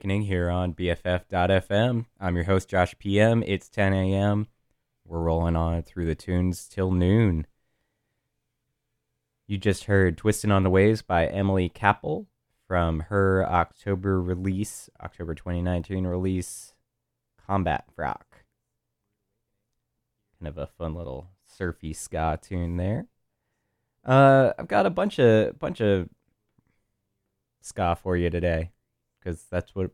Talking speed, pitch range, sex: 125 wpm, 85-105 Hz, male